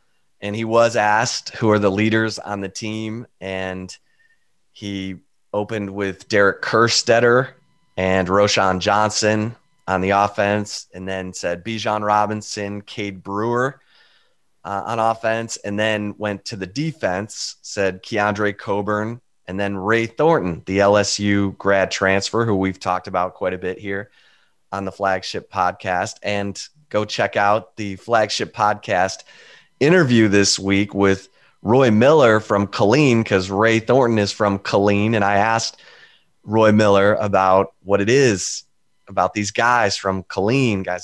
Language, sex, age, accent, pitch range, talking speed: English, male, 20-39, American, 95-110 Hz, 145 wpm